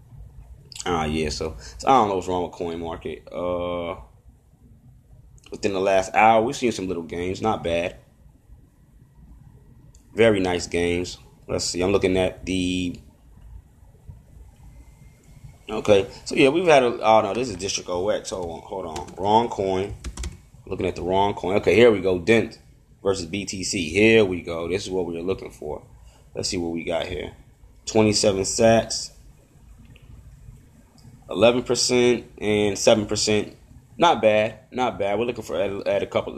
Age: 30-49